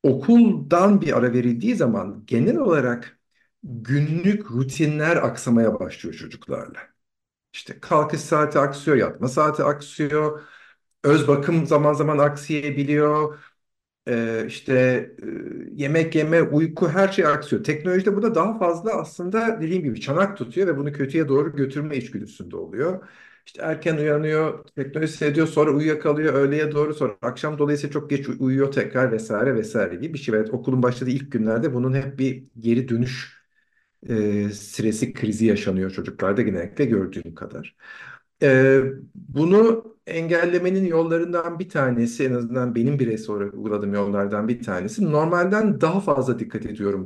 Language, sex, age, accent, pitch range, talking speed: Turkish, male, 50-69, native, 125-160 Hz, 135 wpm